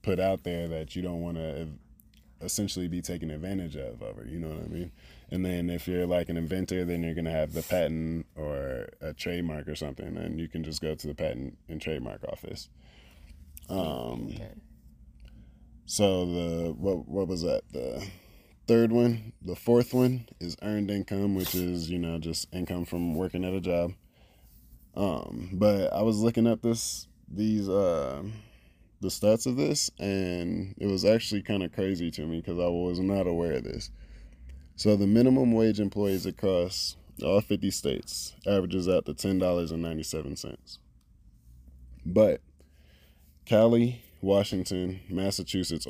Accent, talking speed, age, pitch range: American, 165 wpm, 20-39, 80-95 Hz